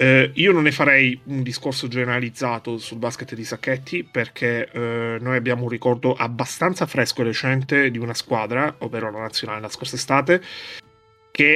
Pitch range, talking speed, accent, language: 115-135 Hz, 165 wpm, native, Italian